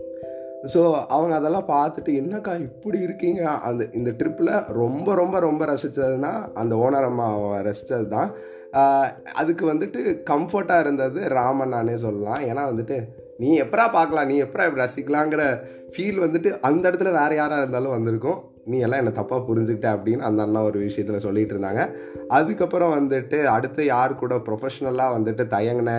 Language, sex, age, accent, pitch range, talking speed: Tamil, male, 20-39, native, 115-140 Hz, 145 wpm